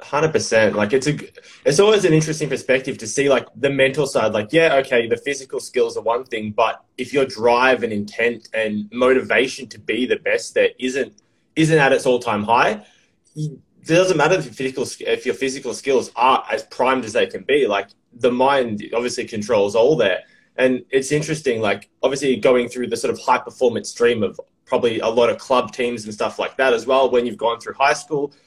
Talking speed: 210 wpm